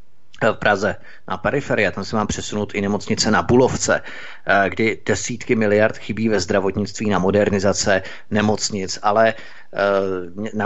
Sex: male